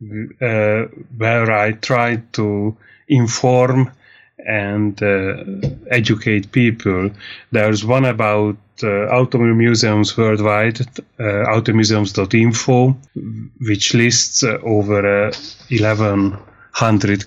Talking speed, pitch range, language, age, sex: 85 wpm, 105-120 Hz, English, 30-49, male